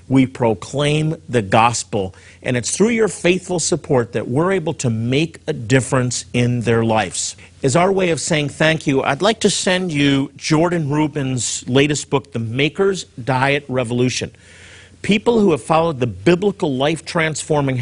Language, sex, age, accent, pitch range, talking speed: English, male, 50-69, American, 115-155 Hz, 160 wpm